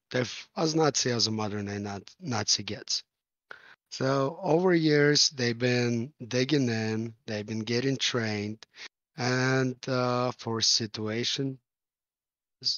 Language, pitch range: English, 110-130 Hz